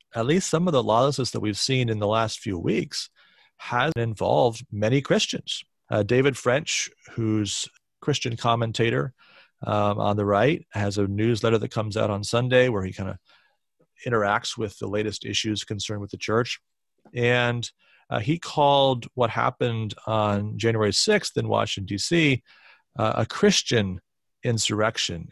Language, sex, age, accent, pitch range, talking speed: English, male, 40-59, American, 105-130 Hz, 155 wpm